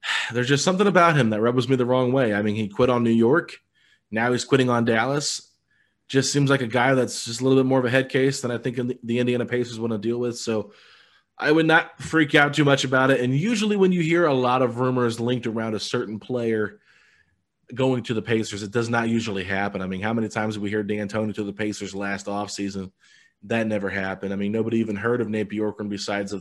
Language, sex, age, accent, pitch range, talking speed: English, male, 20-39, American, 100-120 Hz, 250 wpm